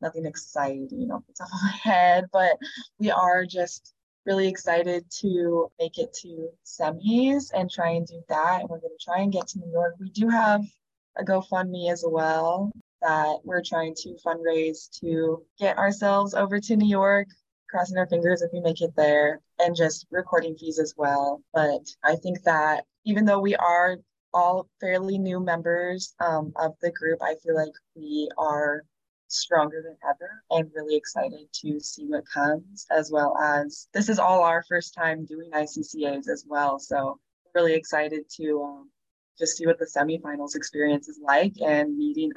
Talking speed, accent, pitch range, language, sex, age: 175 wpm, American, 160-190 Hz, English, female, 20-39